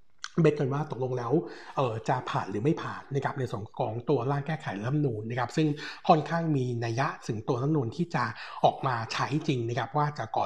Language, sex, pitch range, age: Thai, male, 120-155 Hz, 60-79